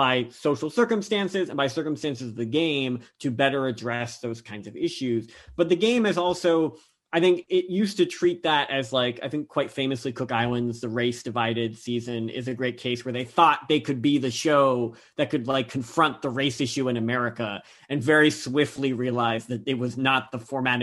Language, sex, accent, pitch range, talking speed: English, male, American, 120-165 Hz, 205 wpm